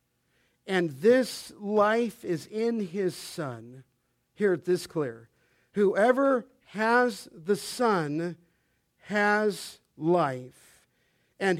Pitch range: 155-215 Hz